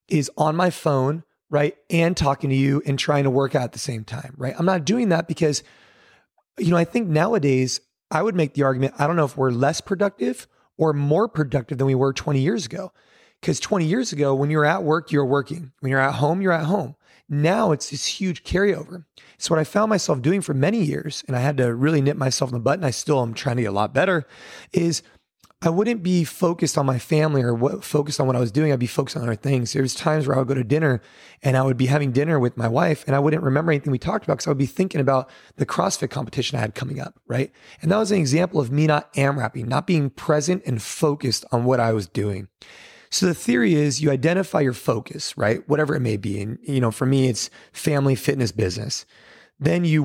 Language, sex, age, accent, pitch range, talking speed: English, male, 30-49, American, 130-160 Hz, 245 wpm